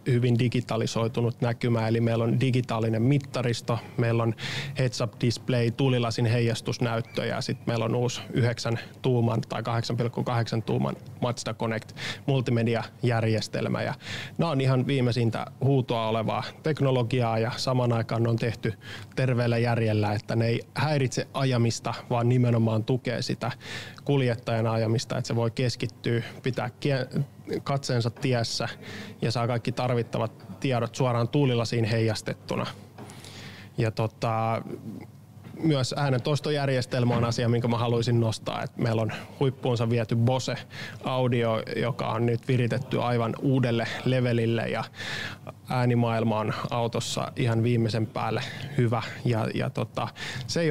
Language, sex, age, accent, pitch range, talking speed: Finnish, male, 20-39, native, 115-130 Hz, 120 wpm